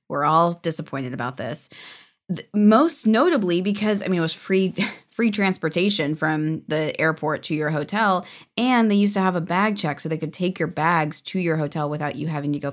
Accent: American